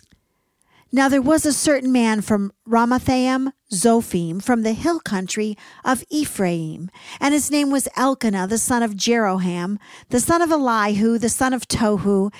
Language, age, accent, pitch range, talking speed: English, 50-69, American, 210-280 Hz, 155 wpm